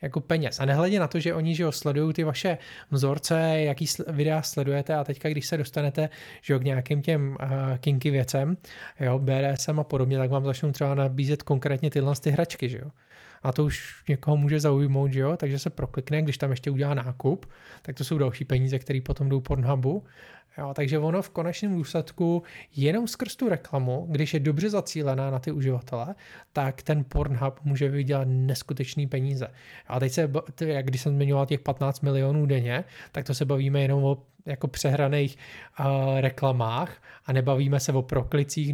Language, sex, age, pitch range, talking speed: Czech, male, 20-39, 135-150 Hz, 185 wpm